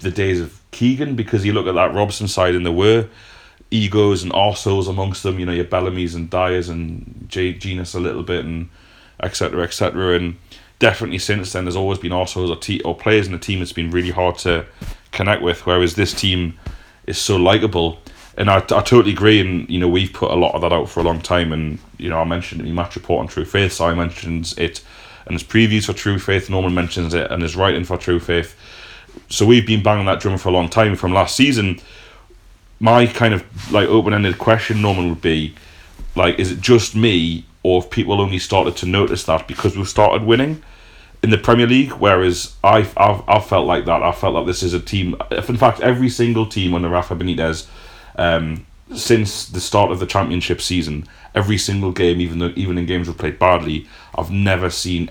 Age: 30-49